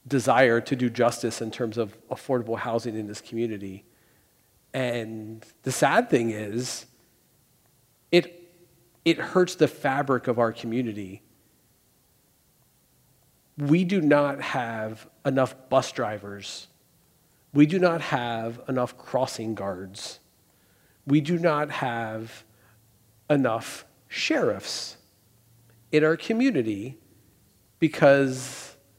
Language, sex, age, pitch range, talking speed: English, male, 50-69, 110-140 Hz, 100 wpm